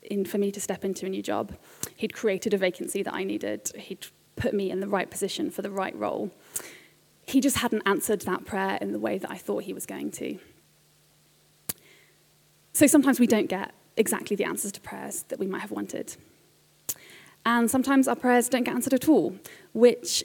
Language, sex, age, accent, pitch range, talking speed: English, female, 20-39, British, 200-250 Hz, 200 wpm